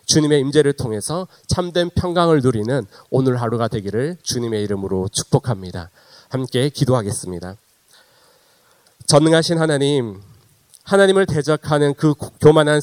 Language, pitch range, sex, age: Korean, 130-180 Hz, male, 40-59